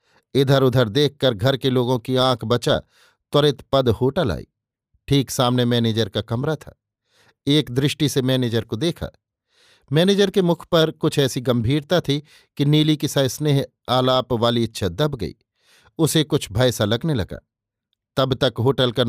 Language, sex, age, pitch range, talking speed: Hindi, male, 50-69, 115-145 Hz, 165 wpm